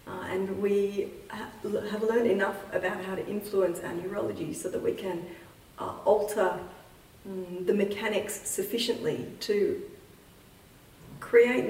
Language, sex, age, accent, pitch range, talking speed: English, female, 30-49, Australian, 180-210 Hz, 125 wpm